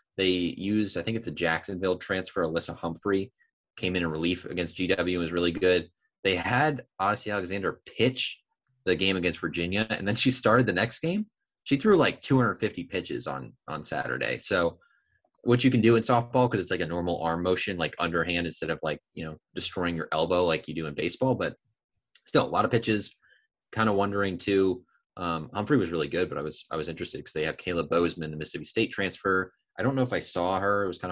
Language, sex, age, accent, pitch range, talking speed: English, male, 20-39, American, 85-110 Hz, 215 wpm